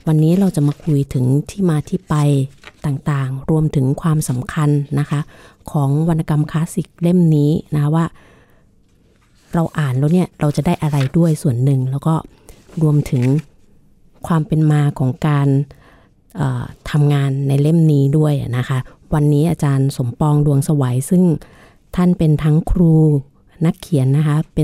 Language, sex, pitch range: Thai, female, 135-155 Hz